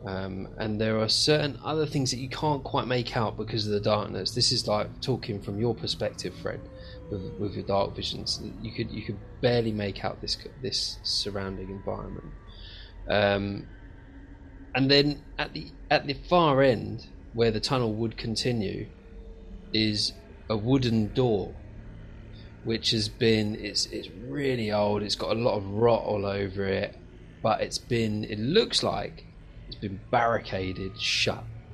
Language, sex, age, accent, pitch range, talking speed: English, male, 20-39, British, 95-115 Hz, 160 wpm